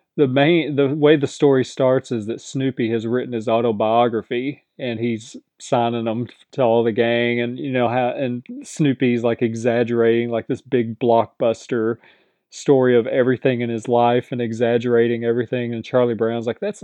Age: 30-49